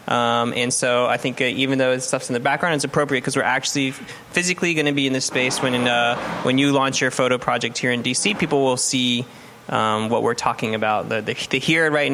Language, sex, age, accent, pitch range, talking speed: English, male, 20-39, American, 120-140 Hz, 245 wpm